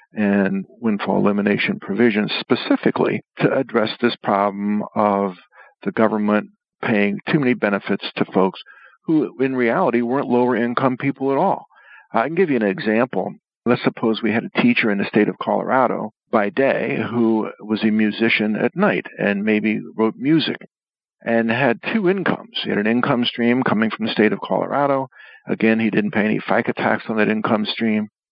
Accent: American